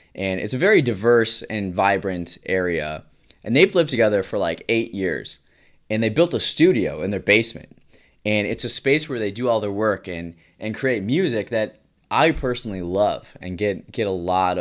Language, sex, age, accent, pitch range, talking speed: English, male, 20-39, American, 95-130 Hz, 195 wpm